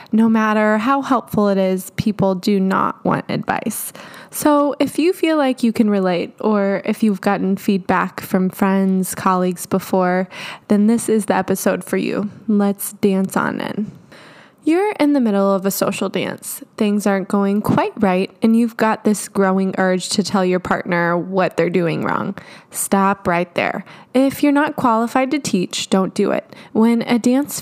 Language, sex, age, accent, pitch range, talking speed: English, female, 20-39, American, 190-240 Hz, 175 wpm